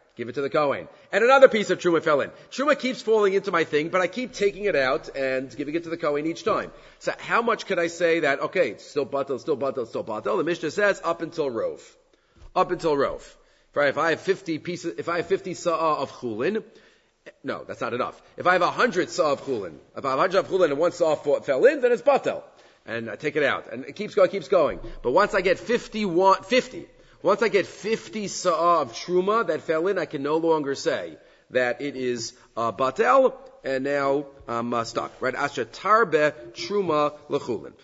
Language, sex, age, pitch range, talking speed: English, male, 40-59, 140-210 Hz, 225 wpm